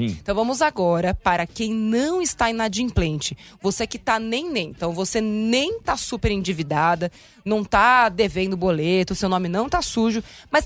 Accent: Brazilian